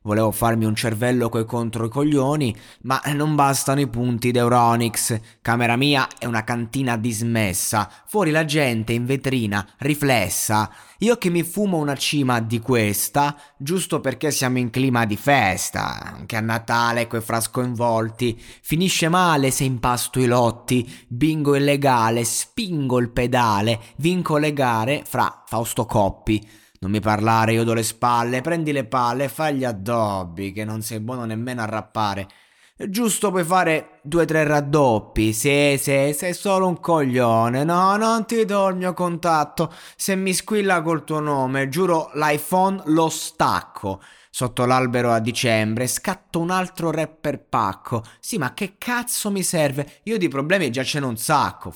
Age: 20-39